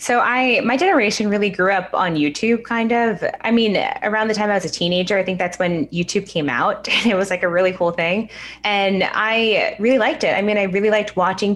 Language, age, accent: English, 20-39, American